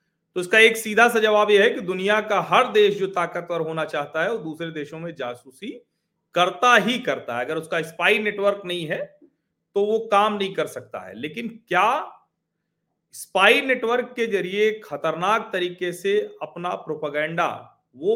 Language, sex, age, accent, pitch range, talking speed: Hindi, male, 40-59, native, 155-210 Hz, 170 wpm